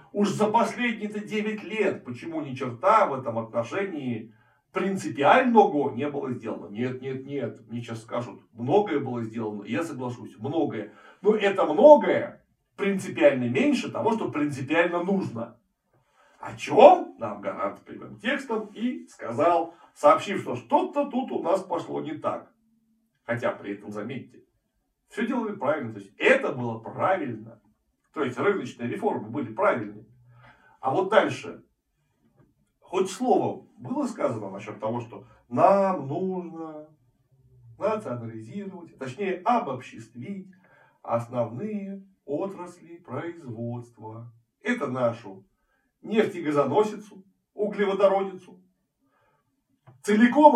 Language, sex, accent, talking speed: Russian, male, native, 115 wpm